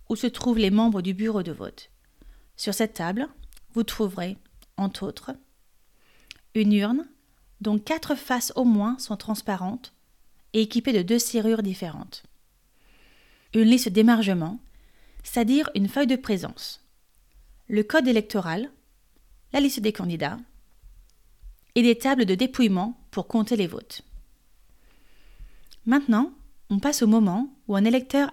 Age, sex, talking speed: 30-49, female, 135 wpm